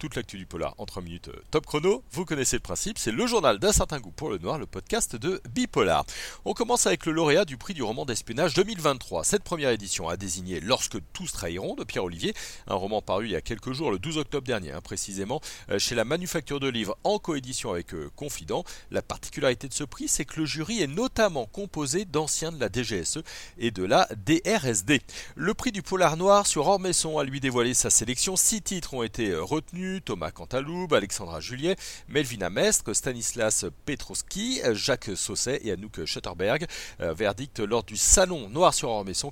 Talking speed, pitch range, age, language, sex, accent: 190 wpm, 120-185 Hz, 40-59, French, male, French